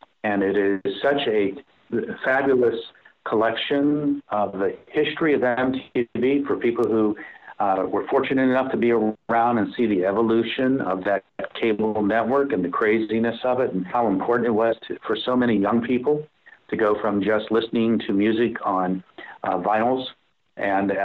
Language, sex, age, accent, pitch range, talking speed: English, male, 50-69, American, 100-120 Hz, 165 wpm